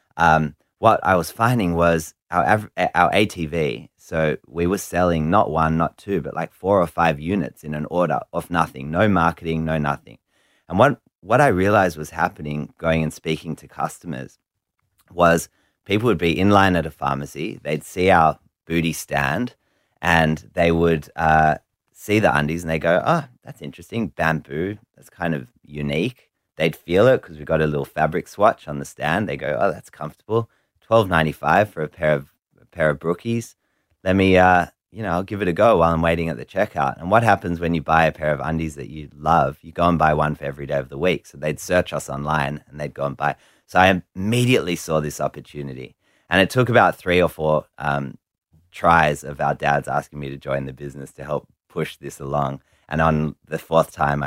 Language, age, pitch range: English, 30-49, 75-90 Hz